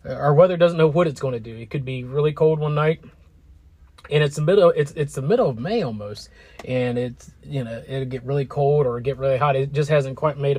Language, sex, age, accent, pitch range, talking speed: English, male, 30-49, American, 120-145 Hz, 245 wpm